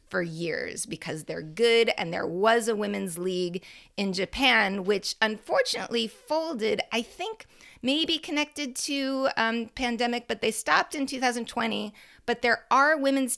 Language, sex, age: English, female, 30-49